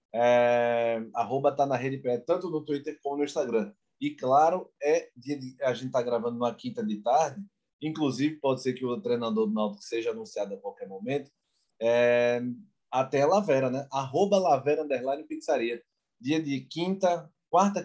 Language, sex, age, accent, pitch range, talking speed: Portuguese, male, 20-39, Brazilian, 130-160 Hz, 170 wpm